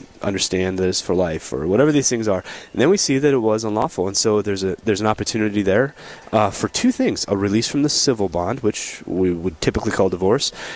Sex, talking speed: male, 230 wpm